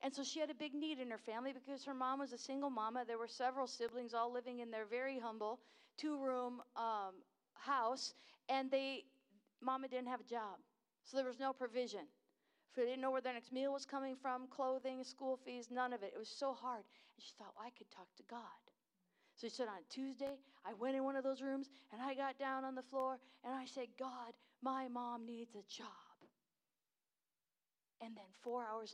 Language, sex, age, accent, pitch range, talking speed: English, female, 50-69, American, 230-270 Hz, 220 wpm